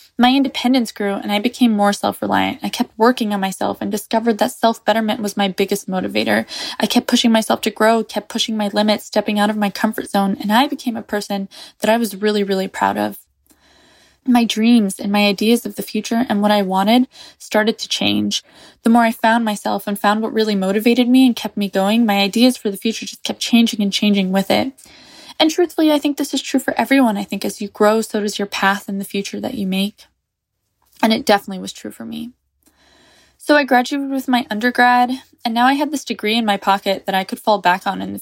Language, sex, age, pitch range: English, female, 10-29, 200-245 Hz